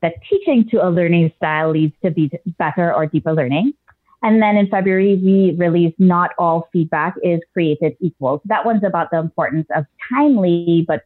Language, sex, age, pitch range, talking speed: English, female, 30-49, 165-215 Hz, 180 wpm